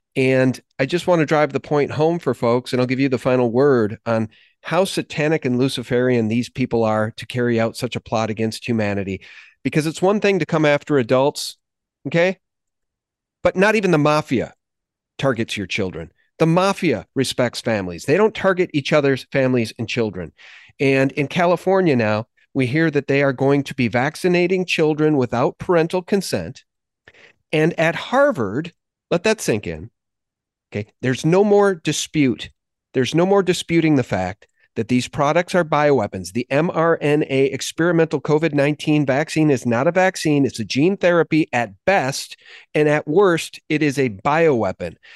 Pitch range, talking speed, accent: 120-165 Hz, 165 wpm, American